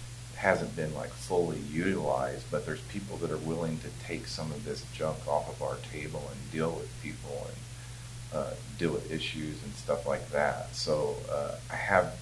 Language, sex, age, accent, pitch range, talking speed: English, male, 40-59, American, 85-120 Hz, 185 wpm